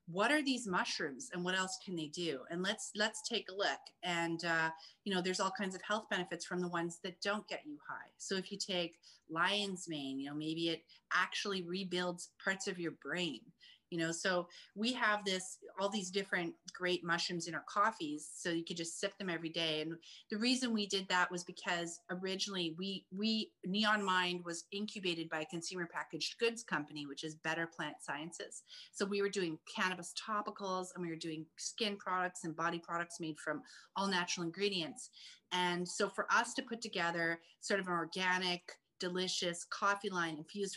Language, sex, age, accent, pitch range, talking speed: English, female, 30-49, American, 165-200 Hz, 195 wpm